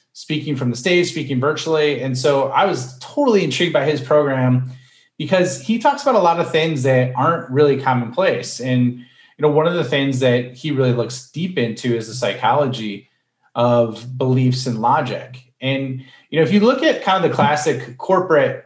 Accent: American